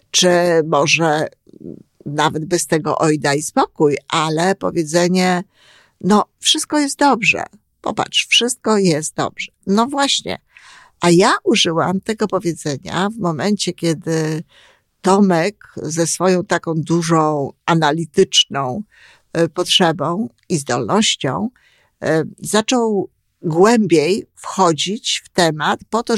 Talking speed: 100 wpm